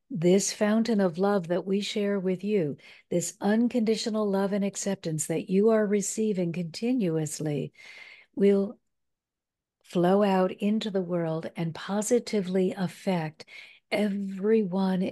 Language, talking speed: English, 115 wpm